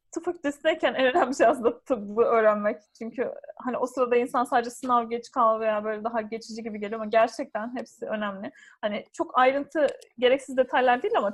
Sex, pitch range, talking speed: female, 210-250 Hz, 175 wpm